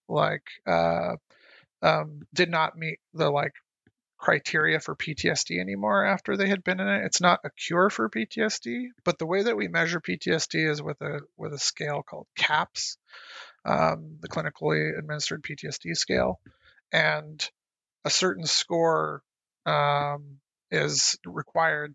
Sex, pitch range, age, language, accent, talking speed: male, 145-175 Hz, 30-49, English, American, 140 wpm